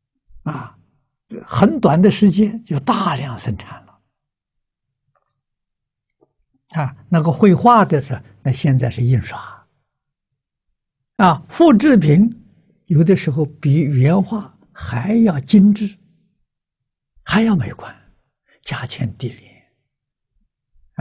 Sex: male